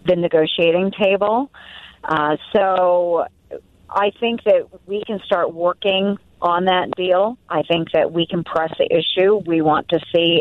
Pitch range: 160-190 Hz